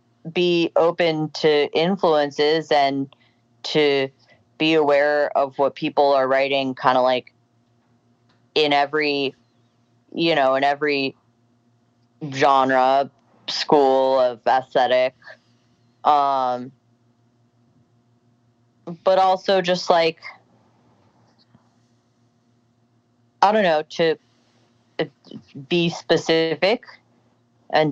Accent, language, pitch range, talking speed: American, English, 120-170 Hz, 80 wpm